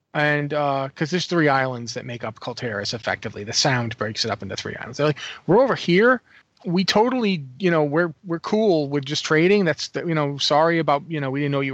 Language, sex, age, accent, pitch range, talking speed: English, male, 30-49, American, 130-170 Hz, 235 wpm